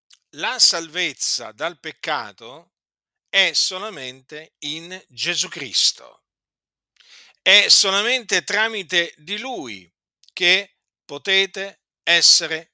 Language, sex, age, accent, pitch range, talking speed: Italian, male, 50-69, native, 155-225 Hz, 80 wpm